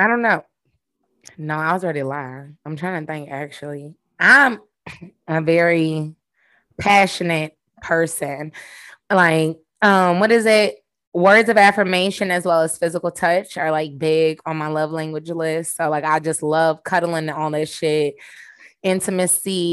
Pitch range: 155-190 Hz